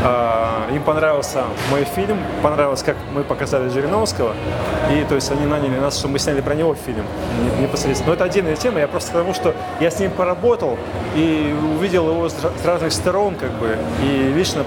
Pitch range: 140-180 Hz